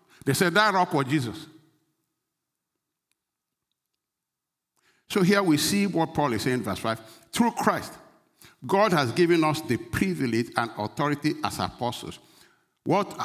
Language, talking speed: English, 130 wpm